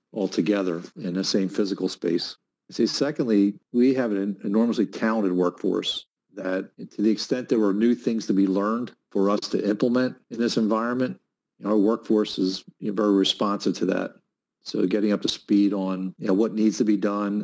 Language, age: English, 40-59